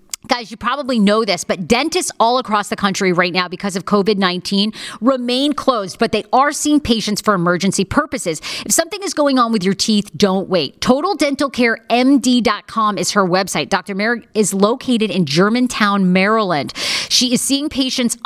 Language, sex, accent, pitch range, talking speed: English, female, American, 195-255 Hz, 170 wpm